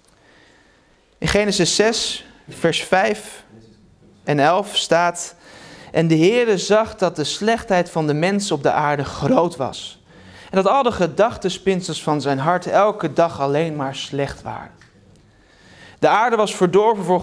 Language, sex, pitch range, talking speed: Dutch, male, 140-185 Hz, 145 wpm